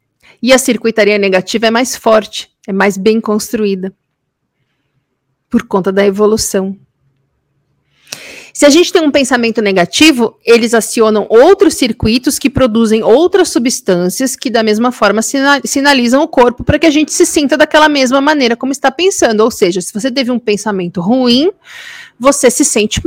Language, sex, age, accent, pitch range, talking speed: Portuguese, female, 40-59, Brazilian, 215-290 Hz, 155 wpm